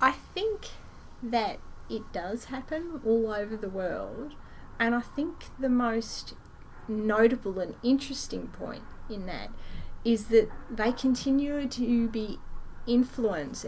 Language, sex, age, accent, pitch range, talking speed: English, female, 30-49, Australian, 185-230 Hz, 125 wpm